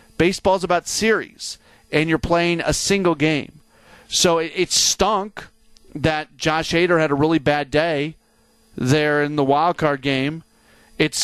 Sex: male